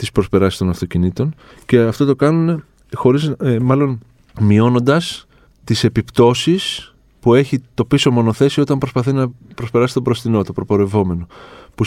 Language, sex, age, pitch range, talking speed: Greek, male, 20-39, 105-140 Hz, 125 wpm